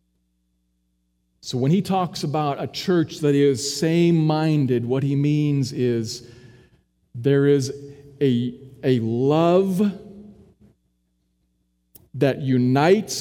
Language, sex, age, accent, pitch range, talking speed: English, male, 40-59, American, 105-155 Hz, 95 wpm